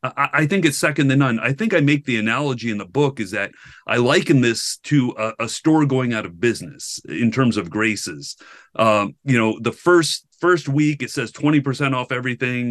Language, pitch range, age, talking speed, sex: English, 115-150 Hz, 40-59, 210 wpm, male